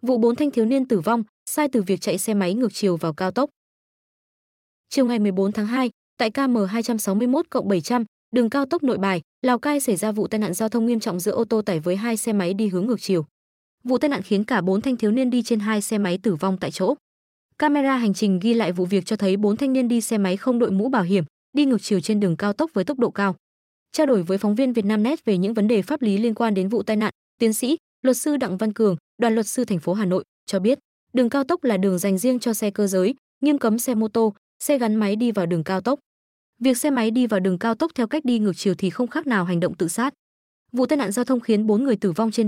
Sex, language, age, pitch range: female, Vietnamese, 20-39, 195-250 Hz